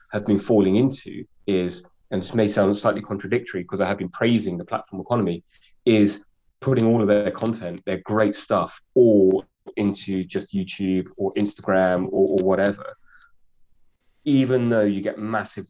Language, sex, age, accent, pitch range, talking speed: English, male, 30-49, British, 100-125 Hz, 160 wpm